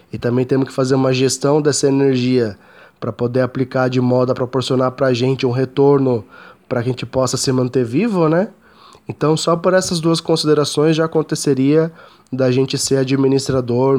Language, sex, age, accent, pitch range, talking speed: Portuguese, male, 20-39, Brazilian, 125-140 Hz, 175 wpm